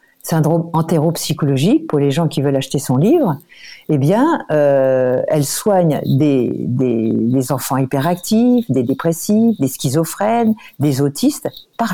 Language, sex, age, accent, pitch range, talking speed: French, female, 50-69, French, 145-200 Hz, 120 wpm